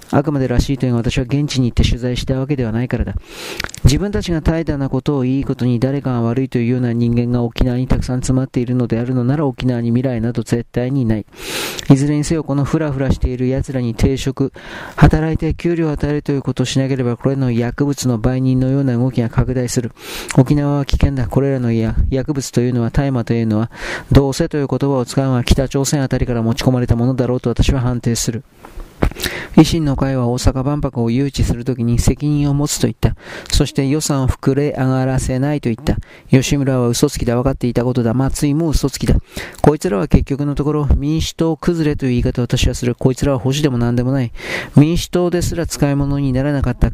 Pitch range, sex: 125-140 Hz, male